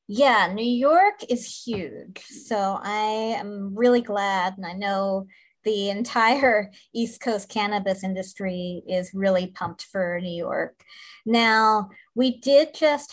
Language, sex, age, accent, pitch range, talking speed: English, female, 30-49, American, 195-225 Hz, 135 wpm